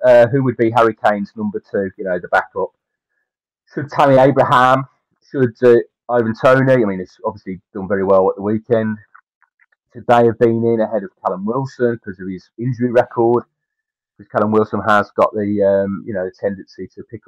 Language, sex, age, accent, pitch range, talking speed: English, male, 30-49, British, 100-125 Hz, 195 wpm